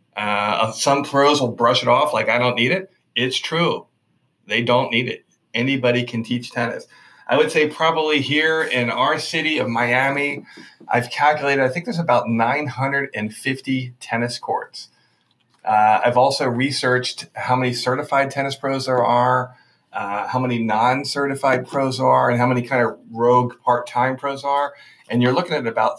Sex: male